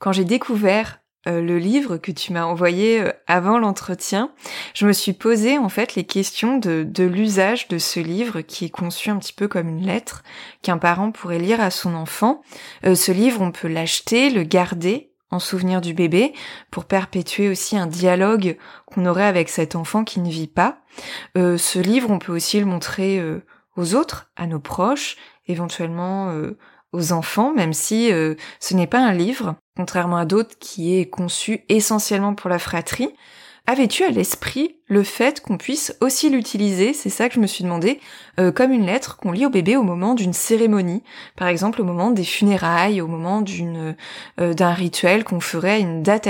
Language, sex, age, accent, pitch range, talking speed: French, female, 20-39, French, 175-225 Hz, 195 wpm